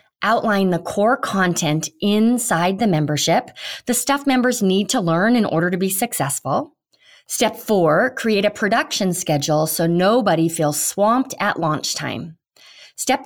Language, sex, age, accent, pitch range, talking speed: English, female, 30-49, American, 165-230 Hz, 145 wpm